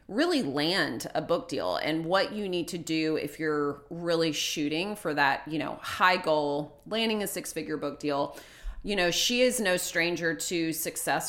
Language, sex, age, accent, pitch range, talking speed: English, female, 30-49, American, 155-195 Hz, 180 wpm